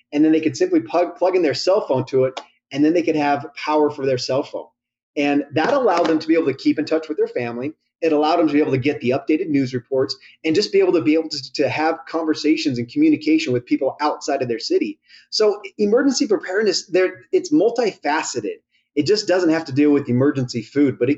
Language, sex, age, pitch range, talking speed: English, male, 30-49, 130-190 Hz, 235 wpm